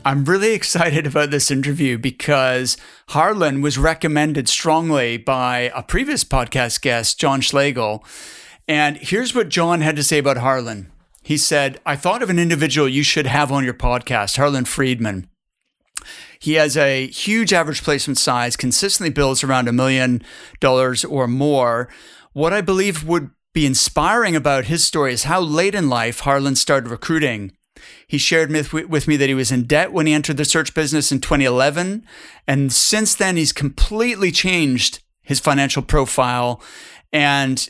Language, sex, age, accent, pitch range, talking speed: English, male, 40-59, American, 130-160 Hz, 160 wpm